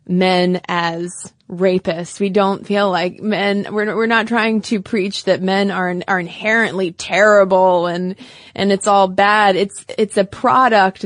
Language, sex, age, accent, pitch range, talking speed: English, female, 20-39, American, 180-210 Hz, 155 wpm